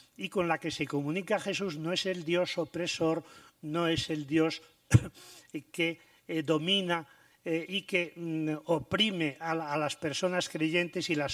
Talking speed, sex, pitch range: 145 wpm, male, 150-185 Hz